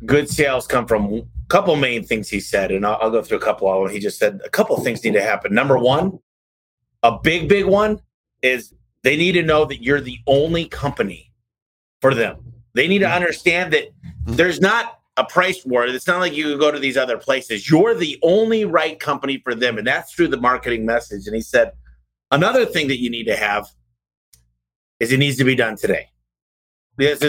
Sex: male